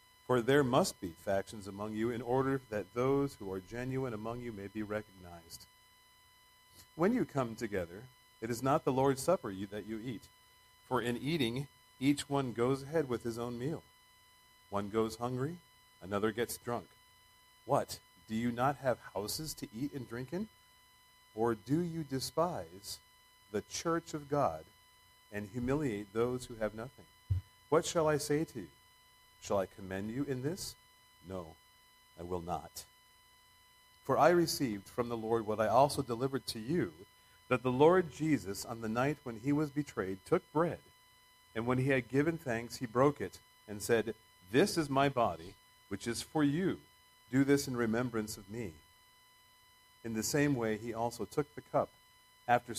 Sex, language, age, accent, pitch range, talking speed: male, English, 40-59, American, 105-135 Hz, 170 wpm